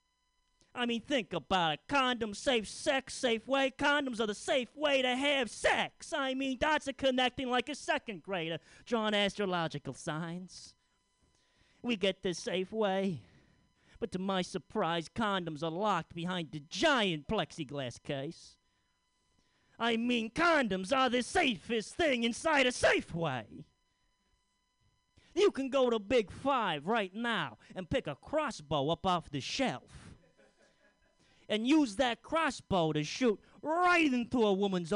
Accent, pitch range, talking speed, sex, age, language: American, 185-270 Hz, 145 wpm, male, 30-49, English